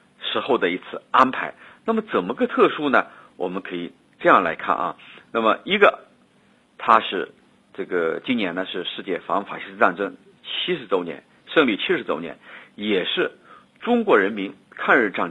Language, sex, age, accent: Chinese, male, 50-69, native